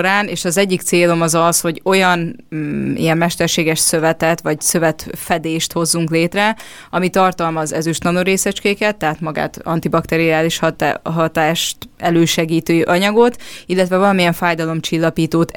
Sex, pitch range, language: female, 165-185 Hz, Hungarian